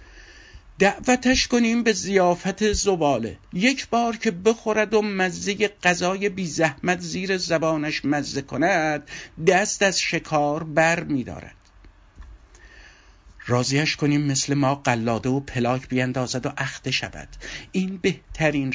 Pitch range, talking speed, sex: 120-185 Hz, 120 wpm, male